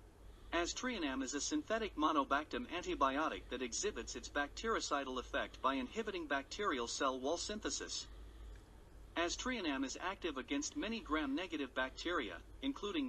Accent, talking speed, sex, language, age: American, 115 wpm, male, English, 50-69